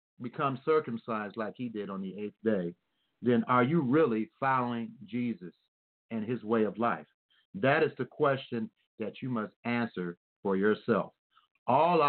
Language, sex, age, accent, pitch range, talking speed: English, male, 50-69, American, 115-145 Hz, 155 wpm